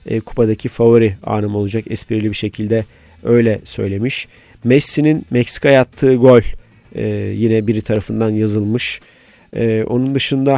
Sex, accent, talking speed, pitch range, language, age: male, native, 110 wpm, 110-125 Hz, Turkish, 40-59